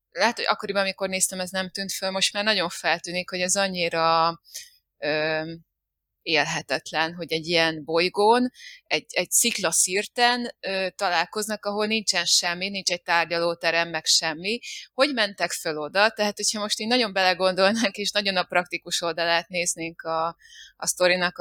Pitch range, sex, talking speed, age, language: 165-195 Hz, female, 145 wpm, 20-39, Hungarian